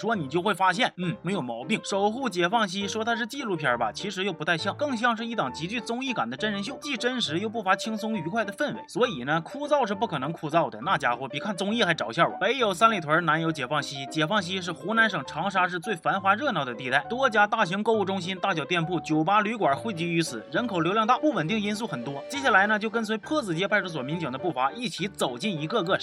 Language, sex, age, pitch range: Chinese, male, 30-49, 160-225 Hz